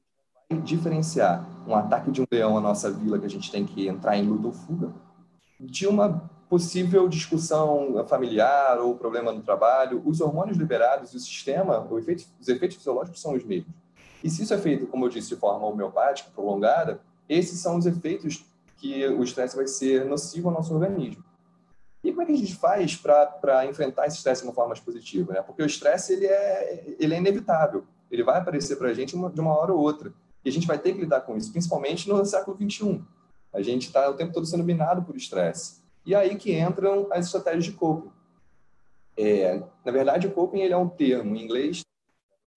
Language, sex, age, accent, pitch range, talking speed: English, male, 20-39, Brazilian, 130-180 Hz, 205 wpm